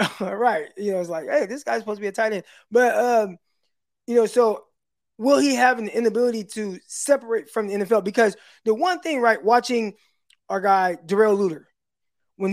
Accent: American